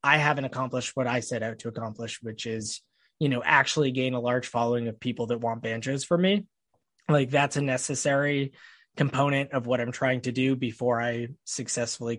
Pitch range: 115-140 Hz